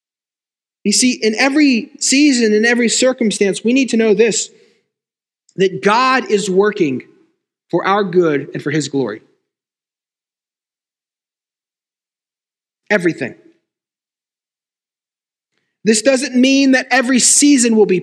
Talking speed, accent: 110 wpm, American